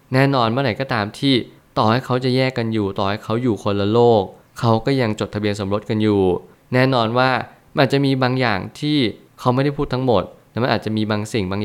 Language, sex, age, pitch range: Thai, male, 20-39, 105-120 Hz